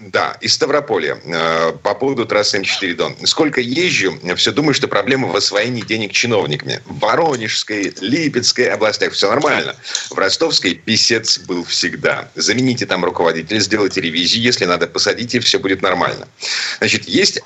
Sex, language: male, Russian